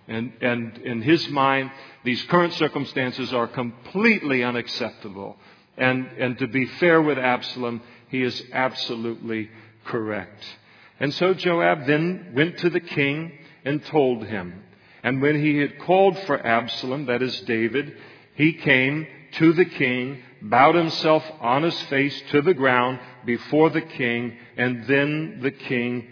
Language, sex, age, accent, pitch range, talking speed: English, male, 50-69, American, 115-145 Hz, 145 wpm